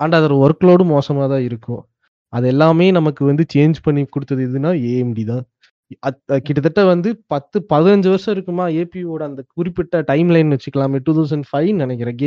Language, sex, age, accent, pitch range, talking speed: Tamil, male, 20-39, native, 140-180 Hz, 150 wpm